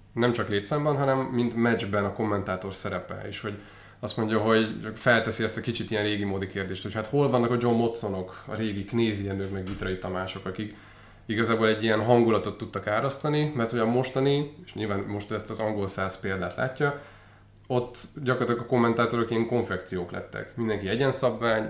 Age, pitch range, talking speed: 20-39, 100-120 Hz, 175 wpm